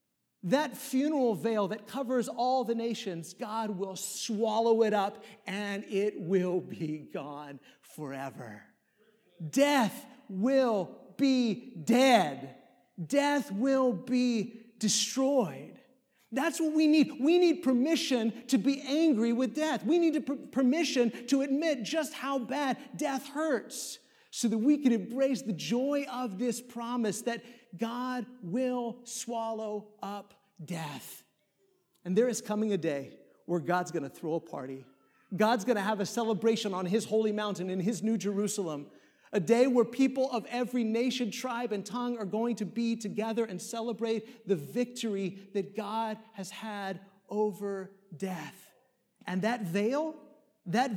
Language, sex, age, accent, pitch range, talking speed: English, male, 50-69, American, 200-260 Hz, 140 wpm